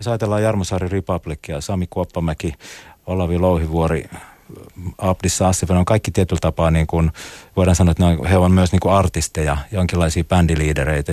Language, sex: Finnish, male